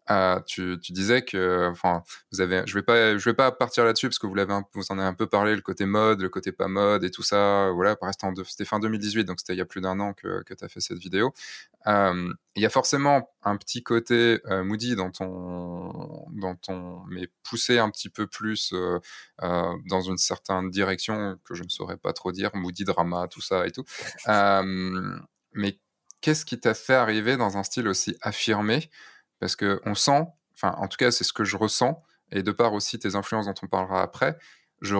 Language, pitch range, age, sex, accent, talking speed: French, 95-115 Hz, 20-39, male, French, 225 wpm